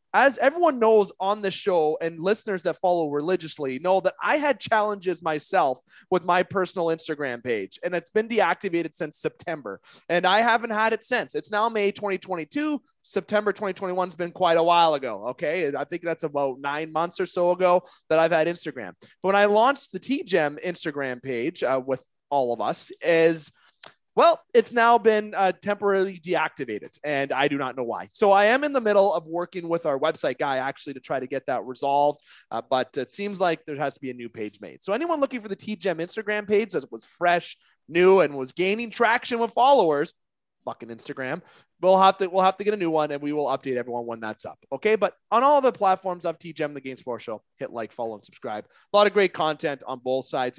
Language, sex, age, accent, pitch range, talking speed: English, male, 20-39, American, 145-205 Hz, 215 wpm